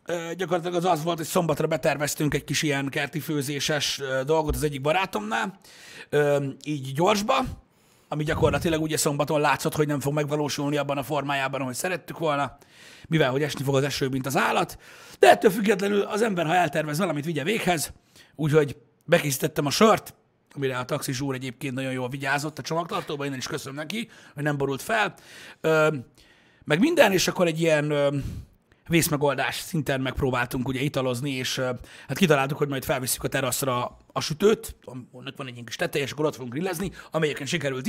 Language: Hungarian